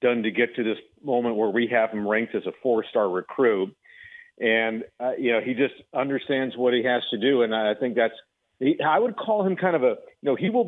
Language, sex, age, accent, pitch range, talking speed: English, male, 50-69, American, 110-145 Hz, 255 wpm